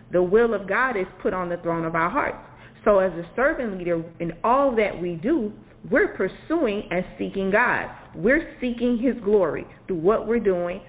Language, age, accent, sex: English, 40-59, American, female